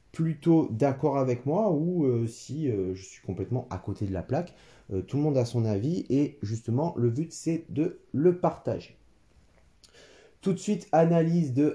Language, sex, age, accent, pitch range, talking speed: French, male, 30-49, French, 105-135 Hz, 185 wpm